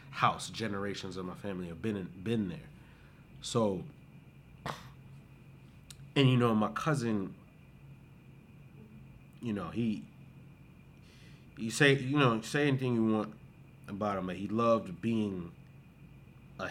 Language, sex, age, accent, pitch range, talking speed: English, male, 30-49, American, 105-130 Hz, 120 wpm